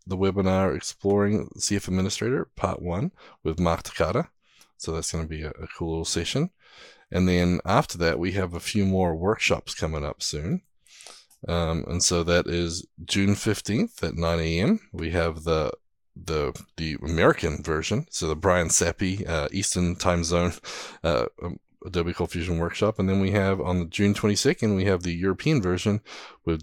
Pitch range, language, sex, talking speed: 80-95 Hz, English, male, 175 wpm